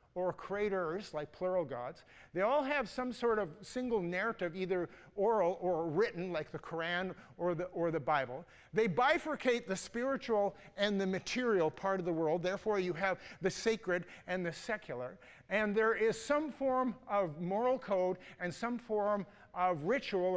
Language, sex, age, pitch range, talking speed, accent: English, male, 50-69, 180-230 Hz, 165 wpm, American